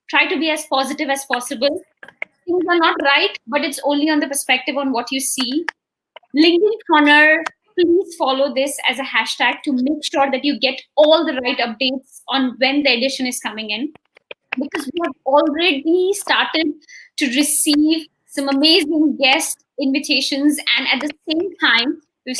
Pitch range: 270-330 Hz